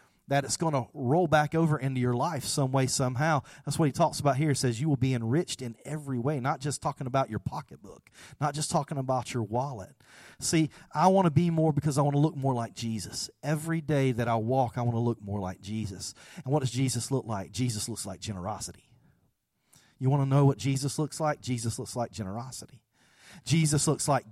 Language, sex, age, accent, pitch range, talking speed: English, male, 40-59, American, 115-150 Hz, 225 wpm